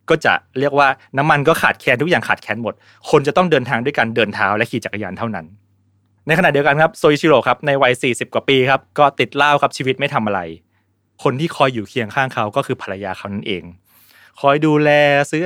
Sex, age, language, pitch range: male, 20-39, Thai, 115-155 Hz